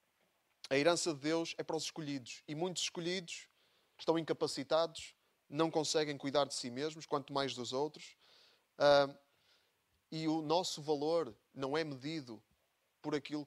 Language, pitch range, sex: Portuguese, 130-160 Hz, male